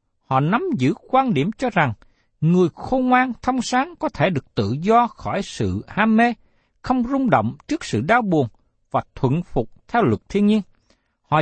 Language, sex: Vietnamese, male